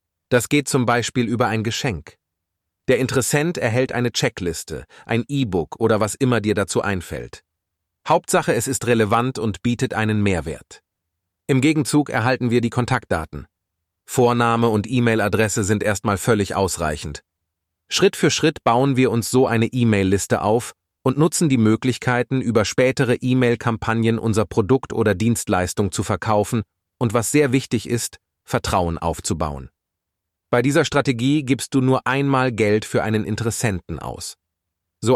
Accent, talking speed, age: German, 145 wpm, 30-49